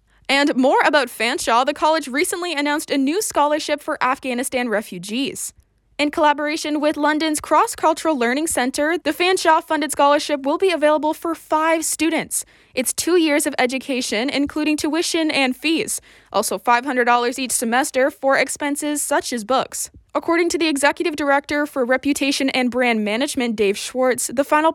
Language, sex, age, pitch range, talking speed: English, female, 20-39, 255-310 Hz, 150 wpm